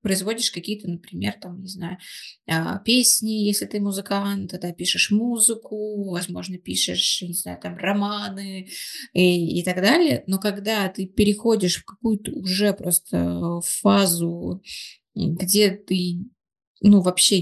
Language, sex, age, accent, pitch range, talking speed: Russian, female, 20-39, native, 180-205 Hz, 125 wpm